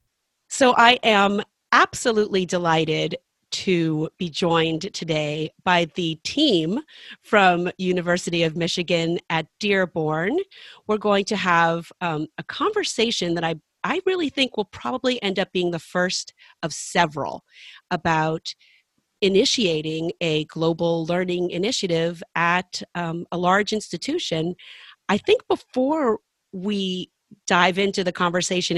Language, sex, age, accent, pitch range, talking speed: English, female, 40-59, American, 170-230 Hz, 120 wpm